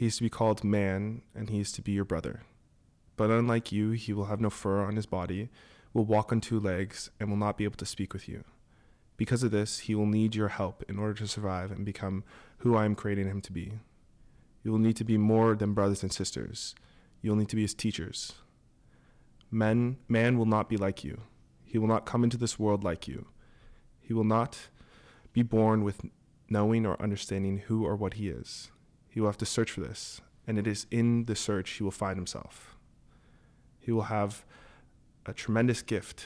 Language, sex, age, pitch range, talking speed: English, male, 20-39, 95-110 Hz, 210 wpm